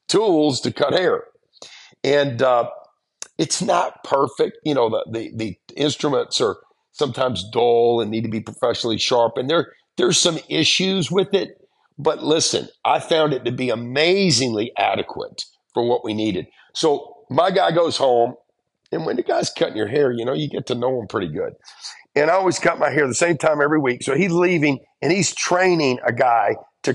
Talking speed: 185 wpm